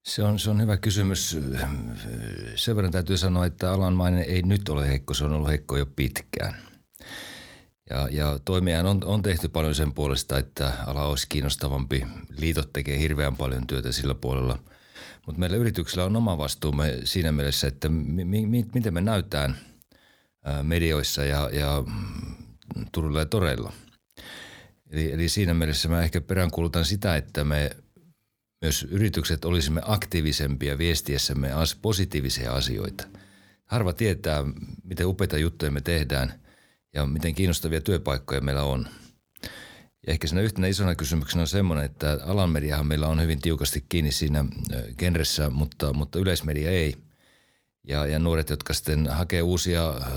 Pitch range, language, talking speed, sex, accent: 75-90 Hz, Finnish, 145 wpm, male, native